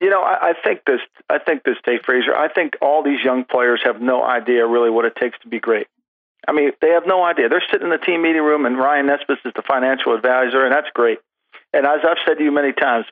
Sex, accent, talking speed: male, American, 265 wpm